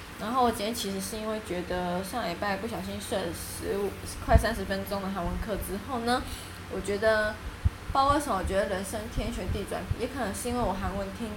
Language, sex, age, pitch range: Chinese, female, 10-29, 190-235 Hz